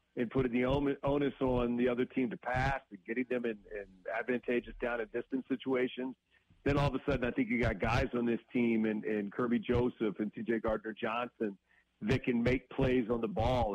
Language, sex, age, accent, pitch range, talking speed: English, male, 40-59, American, 115-140 Hz, 195 wpm